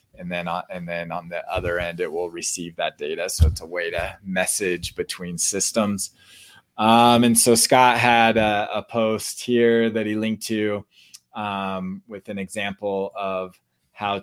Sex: male